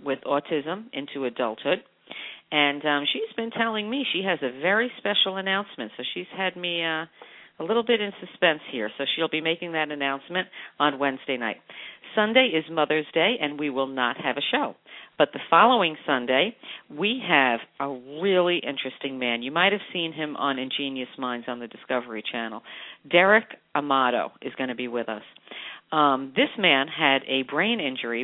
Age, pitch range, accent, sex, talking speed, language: 50-69, 130-165 Hz, American, female, 180 wpm, English